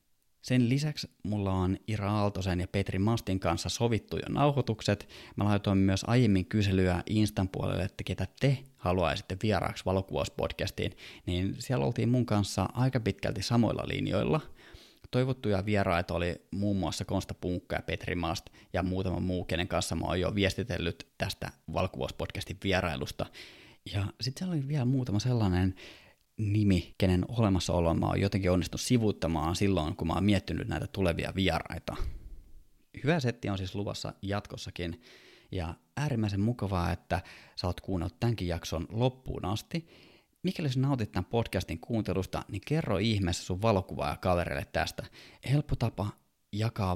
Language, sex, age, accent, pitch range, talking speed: Finnish, male, 20-39, native, 90-110 Hz, 145 wpm